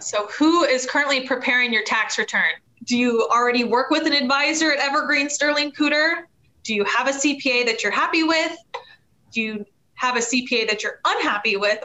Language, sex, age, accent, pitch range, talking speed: English, female, 20-39, American, 215-275 Hz, 185 wpm